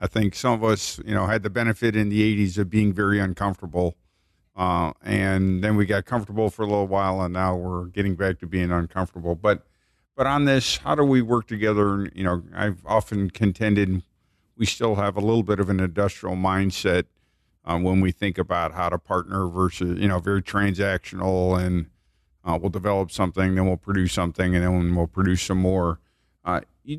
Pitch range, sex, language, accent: 90-110 Hz, male, English, American